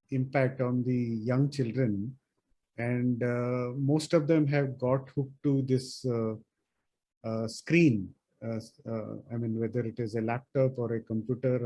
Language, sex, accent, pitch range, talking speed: English, male, Indian, 125-160 Hz, 155 wpm